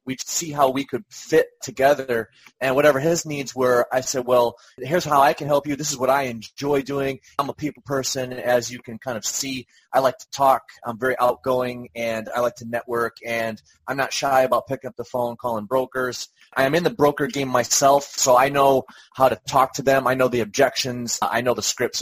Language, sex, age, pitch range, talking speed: English, male, 30-49, 120-140 Hz, 225 wpm